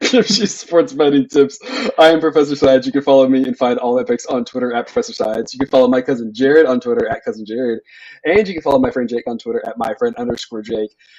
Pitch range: 120-180 Hz